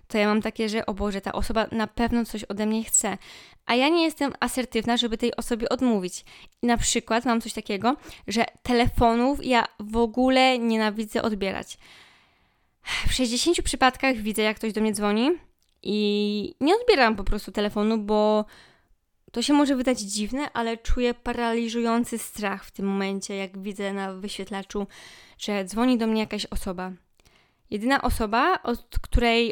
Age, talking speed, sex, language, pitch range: 20-39, 160 wpm, female, Polish, 205-245 Hz